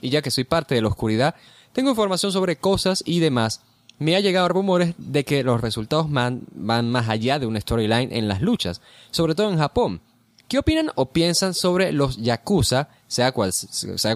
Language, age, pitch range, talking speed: Spanish, 20-39, 115-165 Hz, 195 wpm